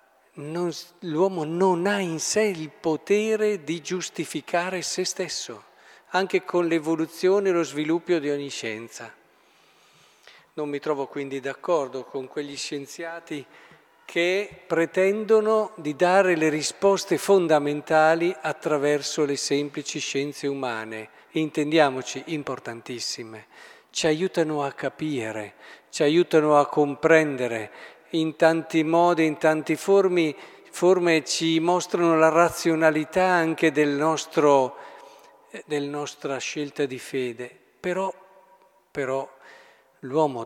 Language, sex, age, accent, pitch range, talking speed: Italian, male, 50-69, native, 145-175 Hz, 105 wpm